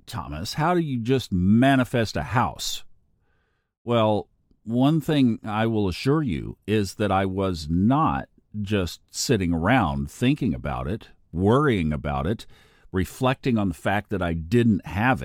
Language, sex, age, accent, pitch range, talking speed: English, male, 50-69, American, 90-125 Hz, 145 wpm